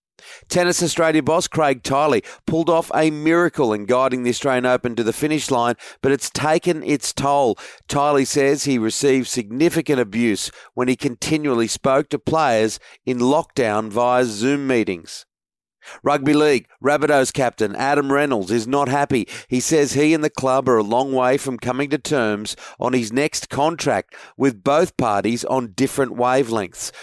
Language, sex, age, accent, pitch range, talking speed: English, male, 40-59, Australian, 125-150 Hz, 160 wpm